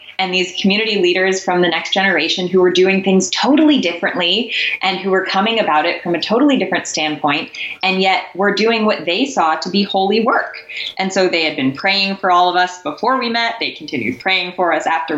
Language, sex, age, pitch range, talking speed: English, female, 20-39, 165-200 Hz, 220 wpm